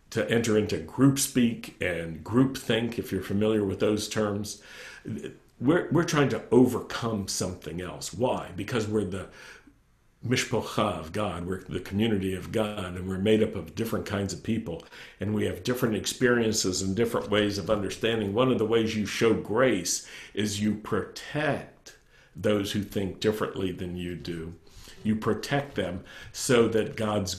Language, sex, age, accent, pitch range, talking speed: English, male, 50-69, American, 95-115 Hz, 165 wpm